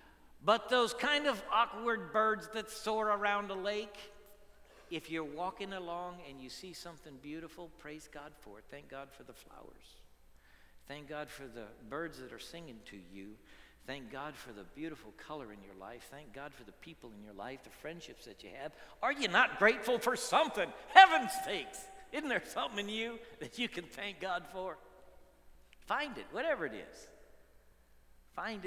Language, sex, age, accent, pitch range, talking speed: English, male, 60-79, American, 130-215 Hz, 180 wpm